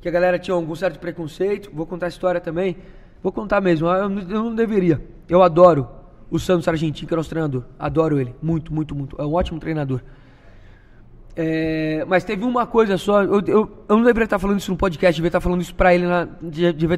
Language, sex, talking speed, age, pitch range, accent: Portuguese, male, 210 wpm, 20-39, 160-200 Hz, Brazilian